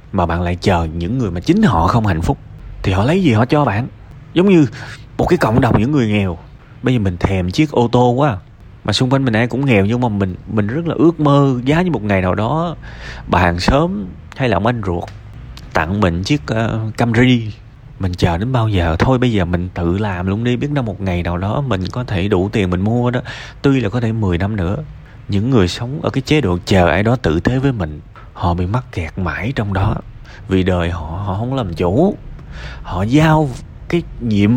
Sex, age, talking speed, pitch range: male, 20-39, 235 wpm, 95-130 Hz